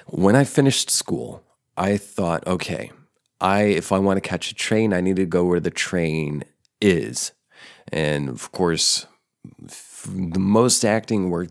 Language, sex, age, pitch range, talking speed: English, male, 30-49, 85-100 Hz, 150 wpm